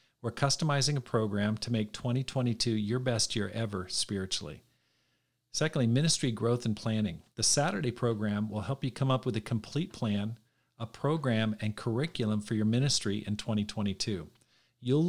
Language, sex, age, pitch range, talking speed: English, male, 50-69, 110-130 Hz, 155 wpm